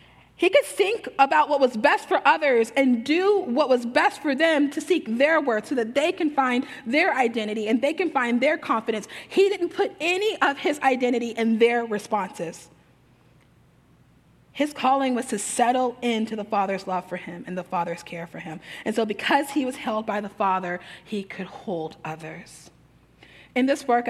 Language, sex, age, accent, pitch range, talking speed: English, female, 30-49, American, 195-275 Hz, 190 wpm